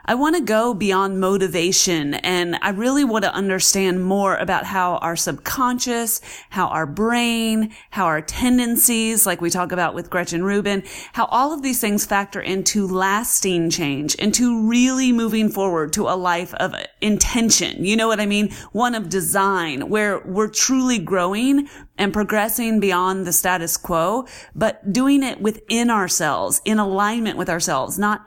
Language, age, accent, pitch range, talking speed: English, 30-49, American, 185-240 Hz, 155 wpm